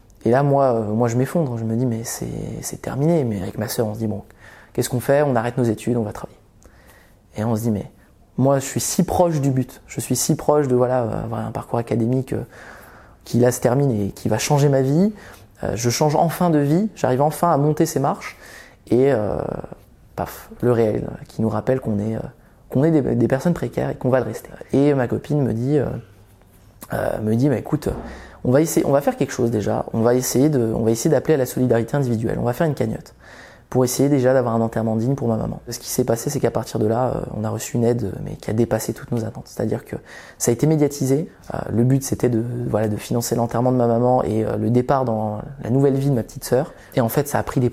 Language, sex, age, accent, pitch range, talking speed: French, male, 20-39, French, 110-140 Hz, 250 wpm